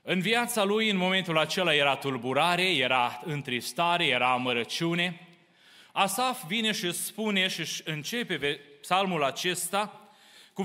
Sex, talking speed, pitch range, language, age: male, 120 wpm, 180-235 Hz, Romanian, 30-49